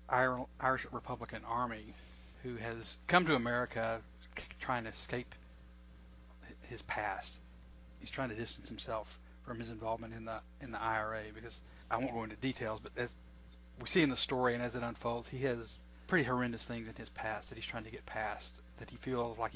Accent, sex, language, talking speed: American, male, English, 185 wpm